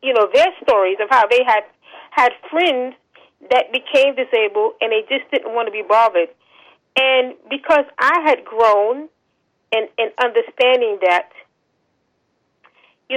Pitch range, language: 230-315 Hz, English